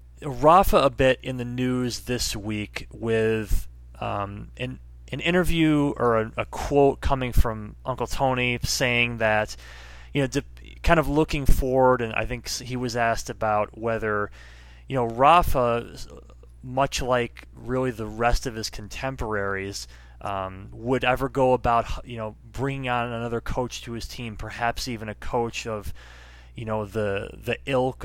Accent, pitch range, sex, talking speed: American, 100-125 Hz, male, 155 wpm